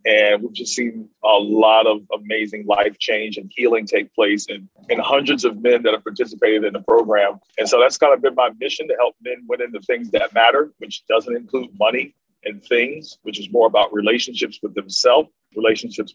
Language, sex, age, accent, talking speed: English, male, 40-59, American, 200 wpm